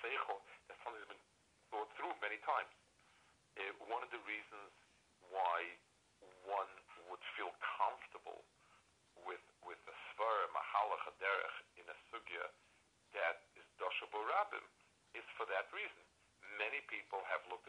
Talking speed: 130 wpm